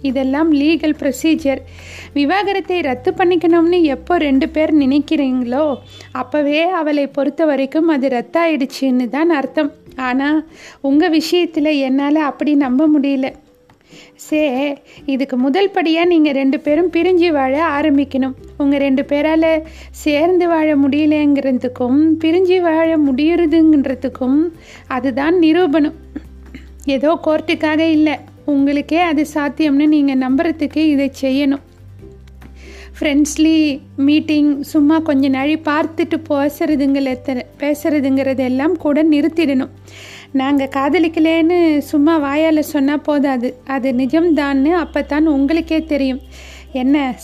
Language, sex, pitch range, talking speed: Tamil, female, 275-315 Hz, 105 wpm